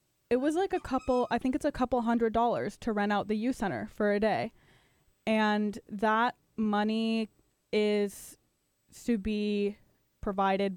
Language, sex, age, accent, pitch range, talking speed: English, female, 10-29, American, 200-240 Hz, 155 wpm